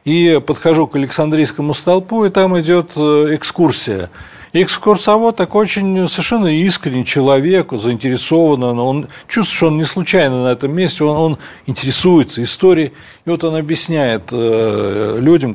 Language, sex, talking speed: Russian, male, 130 wpm